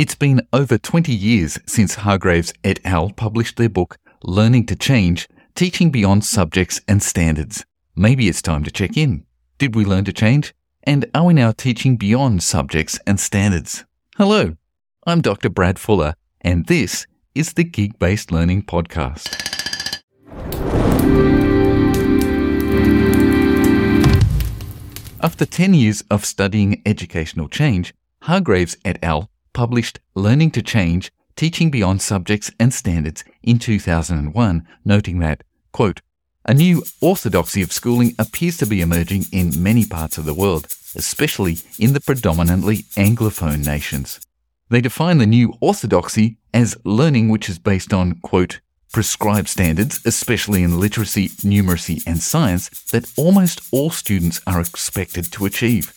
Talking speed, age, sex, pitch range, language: 135 wpm, 40-59, male, 85-120 Hz, English